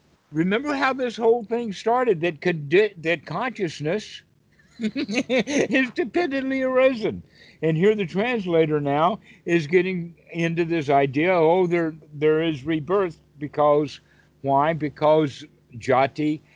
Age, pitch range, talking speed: 60-79, 125-185 Hz, 115 wpm